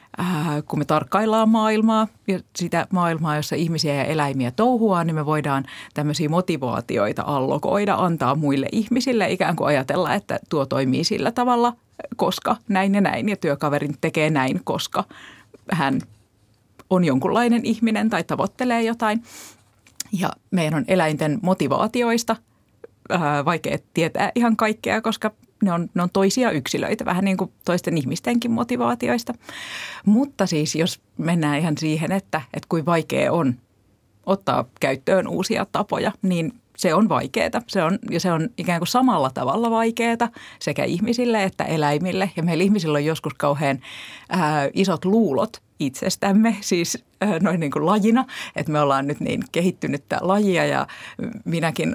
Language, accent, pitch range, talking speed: Finnish, native, 150-210 Hz, 135 wpm